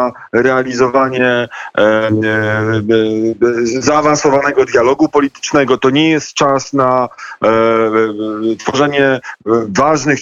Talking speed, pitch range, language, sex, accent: 65 wpm, 130-155 Hz, Polish, male, native